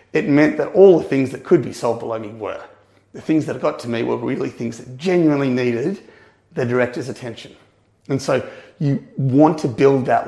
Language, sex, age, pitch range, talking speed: English, male, 30-49, 125-150 Hz, 205 wpm